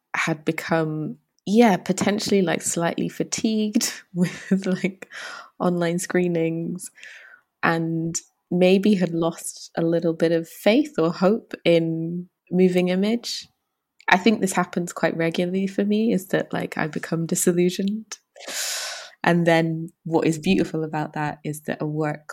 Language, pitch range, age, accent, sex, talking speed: English, 155-185 Hz, 20-39, British, female, 135 wpm